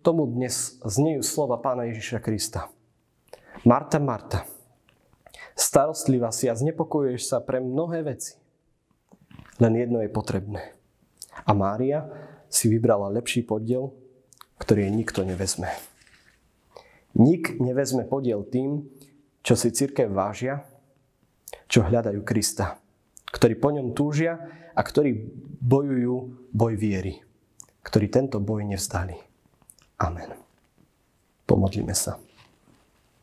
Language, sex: Slovak, male